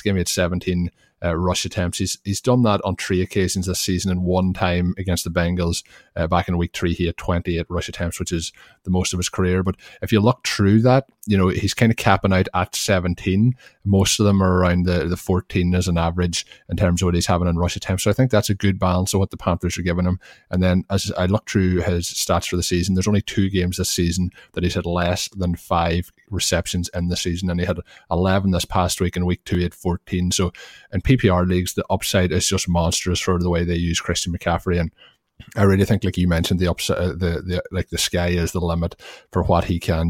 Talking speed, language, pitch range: 250 wpm, English, 85-95 Hz